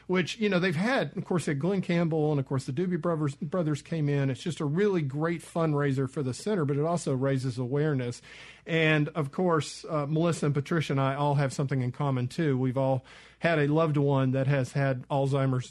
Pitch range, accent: 135-170 Hz, American